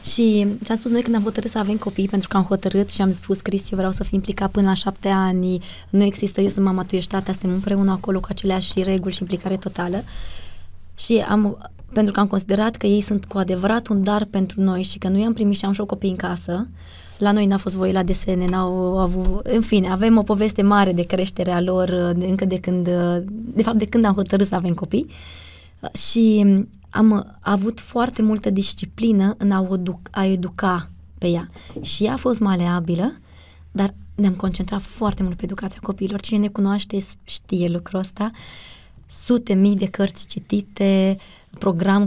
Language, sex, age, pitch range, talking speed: Romanian, female, 20-39, 185-205 Hz, 195 wpm